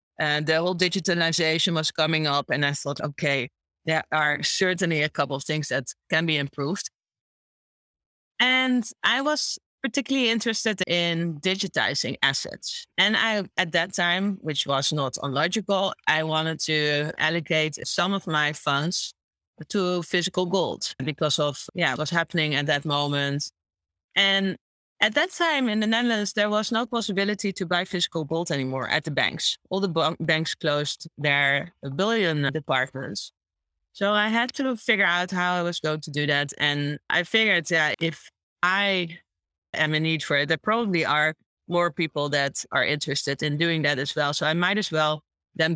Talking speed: 170 wpm